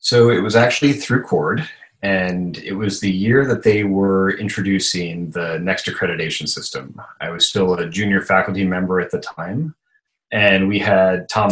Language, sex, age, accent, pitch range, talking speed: English, male, 30-49, American, 85-110 Hz, 170 wpm